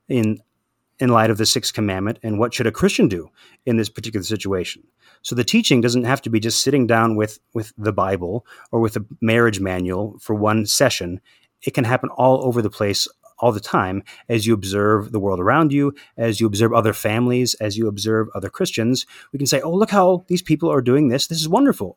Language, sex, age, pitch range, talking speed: English, male, 30-49, 105-125 Hz, 220 wpm